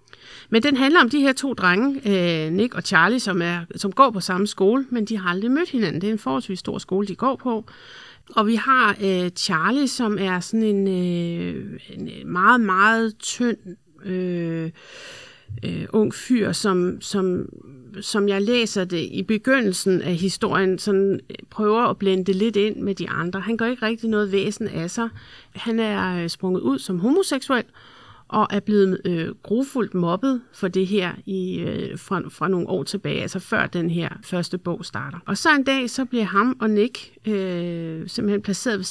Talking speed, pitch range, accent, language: 180 wpm, 180-230 Hz, native, Danish